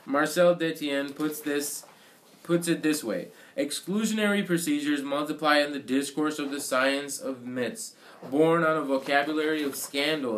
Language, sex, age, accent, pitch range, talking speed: English, male, 20-39, American, 125-155 Hz, 135 wpm